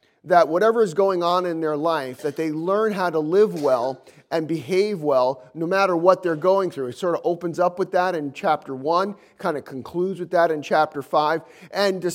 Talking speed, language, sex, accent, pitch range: 215 wpm, English, male, American, 155-200 Hz